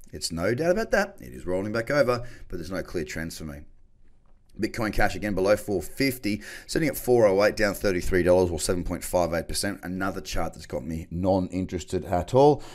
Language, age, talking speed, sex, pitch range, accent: English, 30-49, 175 wpm, male, 85-110 Hz, Australian